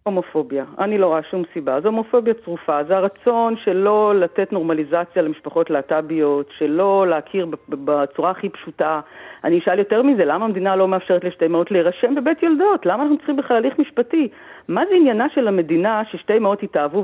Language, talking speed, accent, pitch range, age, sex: Hebrew, 170 wpm, native, 165-220 Hz, 50-69, female